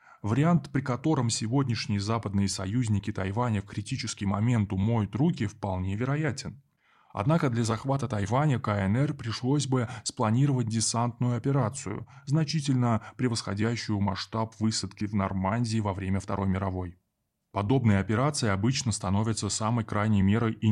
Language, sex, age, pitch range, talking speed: Russian, male, 20-39, 100-130 Hz, 120 wpm